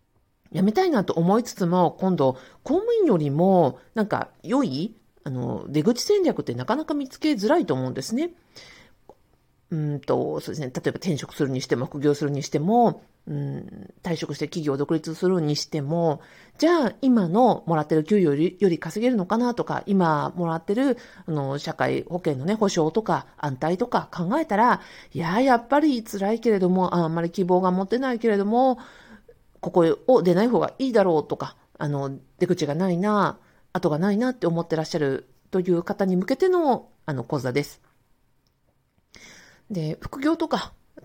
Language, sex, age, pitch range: Japanese, female, 50-69, 160-230 Hz